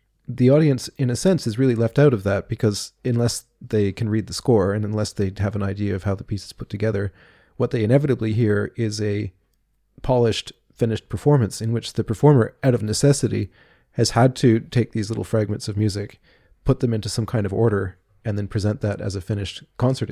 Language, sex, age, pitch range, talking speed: English, male, 30-49, 105-125 Hz, 210 wpm